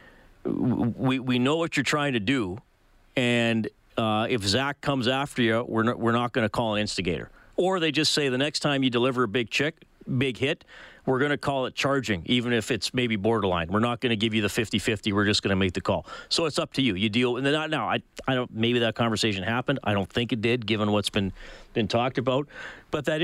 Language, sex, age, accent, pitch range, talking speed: English, male, 40-59, American, 110-140 Hz, 245 wpm